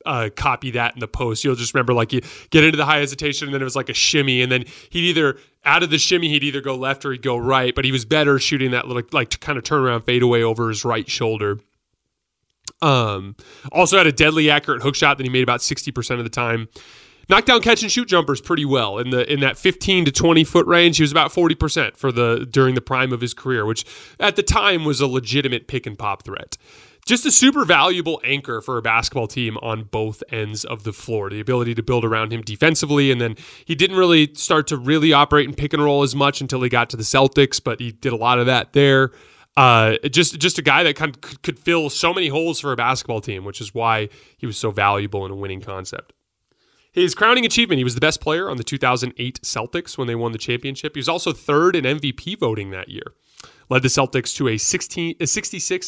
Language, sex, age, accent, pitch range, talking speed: English, male, 30-49, American, 115-150 Hz, 245 wpm